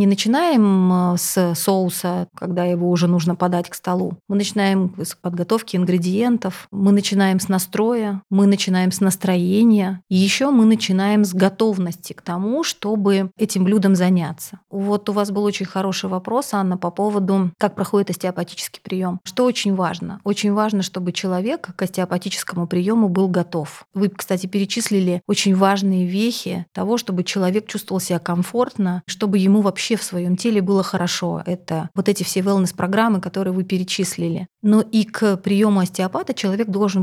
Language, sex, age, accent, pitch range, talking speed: Russian, female, 30-49, native, 180-210 Hz, 160 wpm